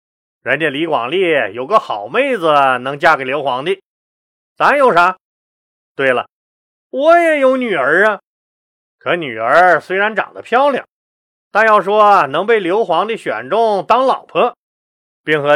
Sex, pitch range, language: male, 145-235 Hz, Chinese